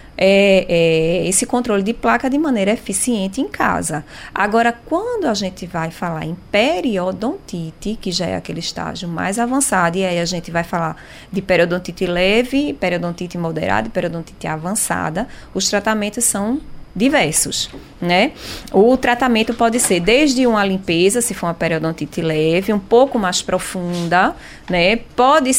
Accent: Brazilian